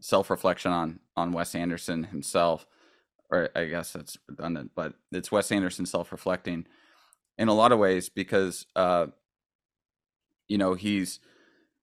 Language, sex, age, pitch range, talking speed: English, male, 20-39, 85-95 Hz, 130 wpm